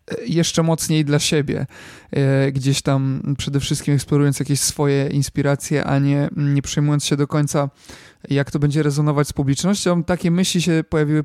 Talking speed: 160 wpm